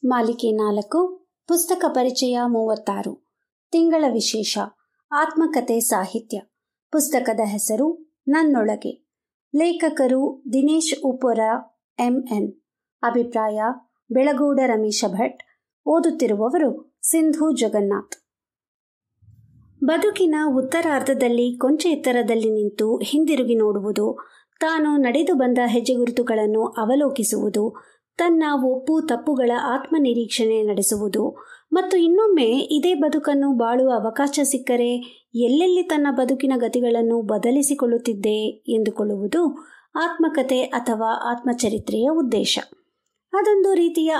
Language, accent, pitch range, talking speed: Kannada, native, 230-310 Hz, 80 wpm